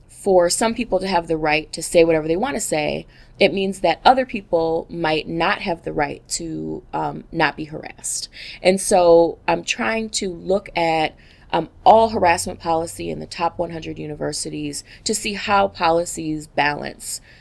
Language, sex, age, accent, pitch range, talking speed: English, female, 20-39, American, 155-185 Hz, 170 wpm